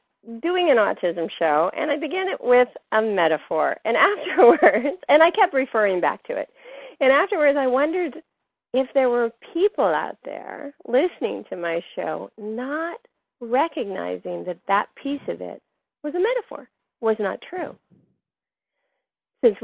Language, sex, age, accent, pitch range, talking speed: English, female, 40-59, American, 195-285 Hz, 145 wpm